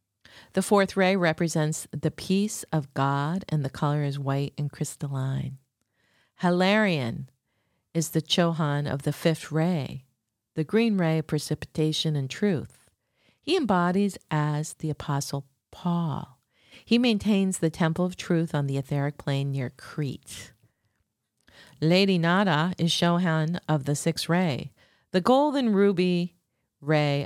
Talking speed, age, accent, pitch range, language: 130 wpm, 40-59, American, 145-180 Hz, English